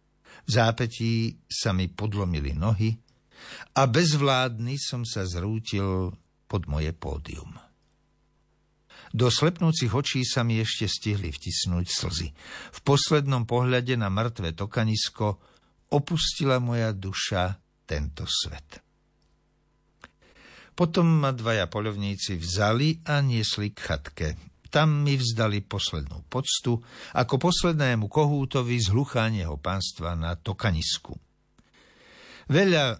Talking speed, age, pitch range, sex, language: 100 wpm, 60-79, 95-130 Hz, male, Slovak